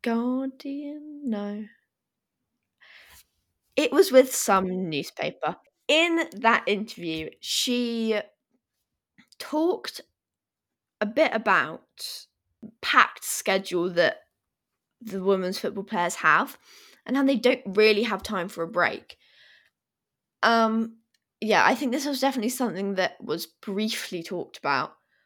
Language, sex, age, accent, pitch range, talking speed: English, female, 20-39, British, 175-230 Hz, 110 wpm